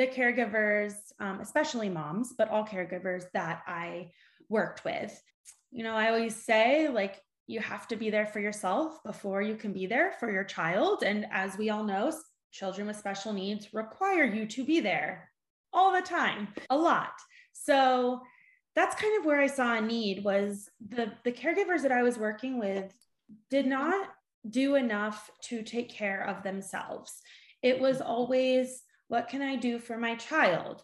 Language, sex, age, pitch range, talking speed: English, female, 20-39, 210-275 Hz, 175 wpm